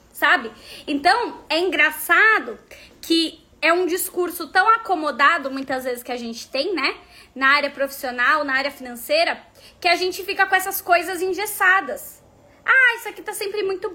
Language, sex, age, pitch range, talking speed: Portuguese, female, 20-39, 275-365 Hz, 160 wpm